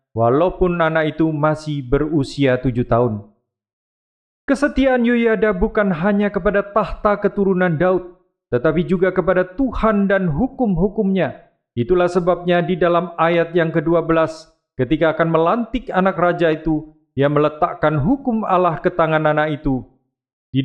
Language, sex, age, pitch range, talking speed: Indonesian, male, 40-59, 155-200 Hz, 125 wpm